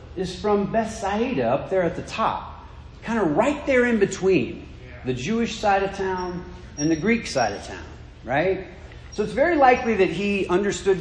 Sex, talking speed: male, 180 wpm